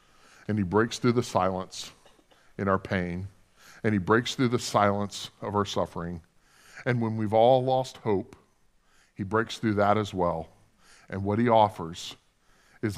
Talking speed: 160 wpm